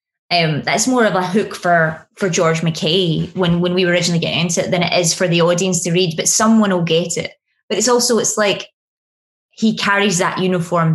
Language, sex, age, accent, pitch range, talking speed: English, female, 20-39, British, 165-190 Hz, 220 wpm